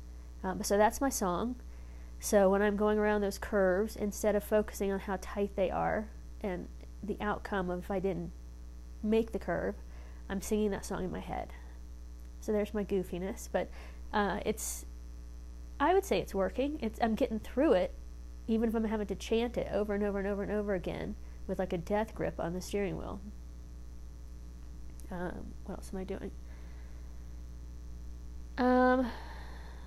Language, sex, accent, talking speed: English, female, American, 170 wpm